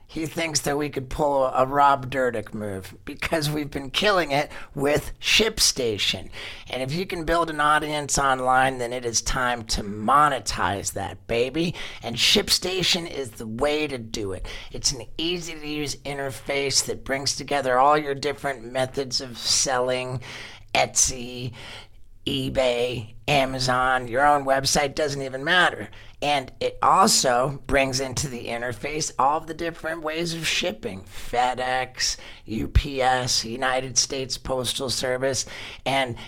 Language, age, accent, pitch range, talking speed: English, 40-59, American, 120-145 Hz, 140 wpm